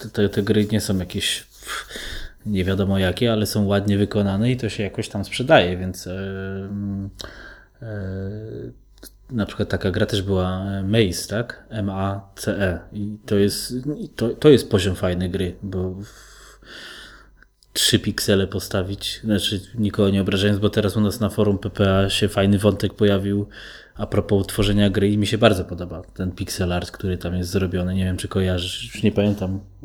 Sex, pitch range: male, 95-110 Hz